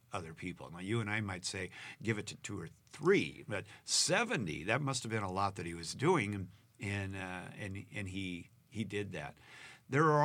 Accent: American